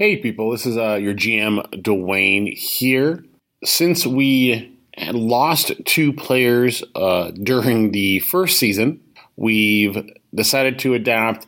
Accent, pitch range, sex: American, 105-140 Hz, male